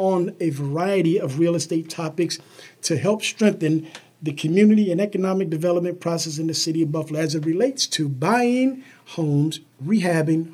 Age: 50-69